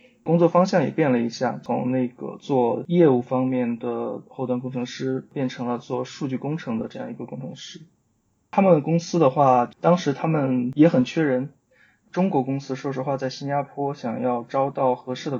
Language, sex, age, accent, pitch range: Chinese, male, 20-39, native, 120-140 Hz